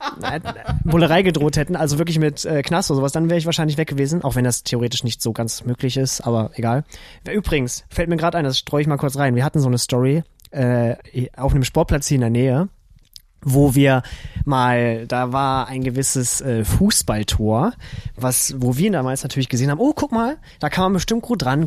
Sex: male